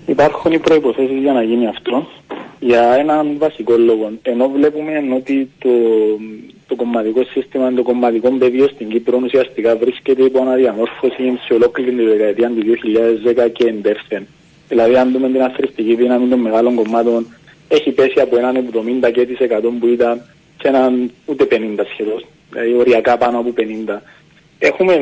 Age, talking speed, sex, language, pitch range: 30-49, 145 wpm, male, Greek, 115-145 Hz